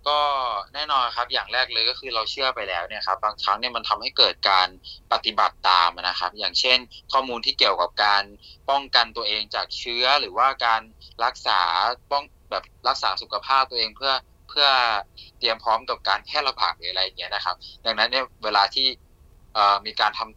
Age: 20-39